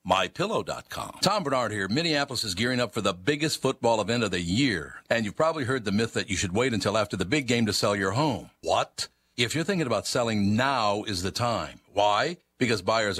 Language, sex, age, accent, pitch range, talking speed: English, male, 60-79, American, 105-135 Hz, 220 wpm